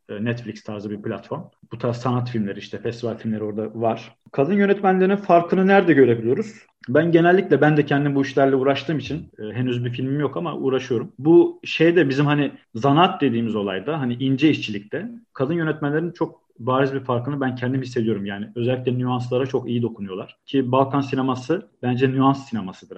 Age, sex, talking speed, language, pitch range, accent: 40-59, male, 165 wpm, Turkish, 115-140 Hz, native